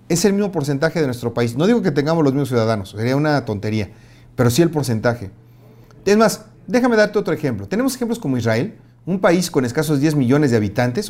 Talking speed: 210 wpm